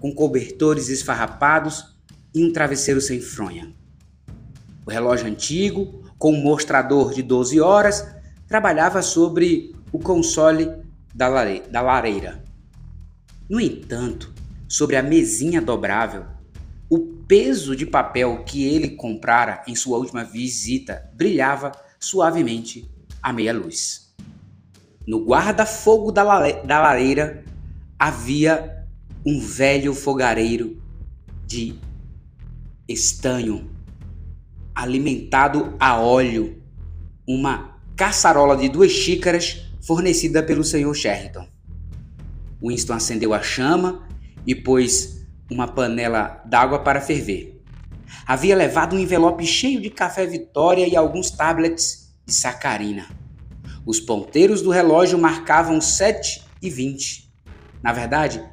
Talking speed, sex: 110 wpm, male